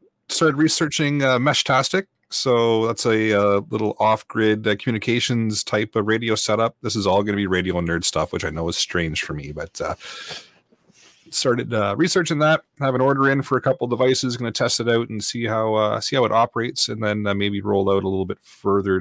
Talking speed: 220 wpm